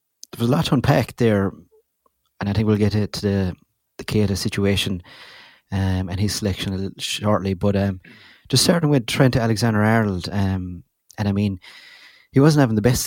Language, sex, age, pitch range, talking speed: English, male, 30-49, 95-110 Hz, 170 wpm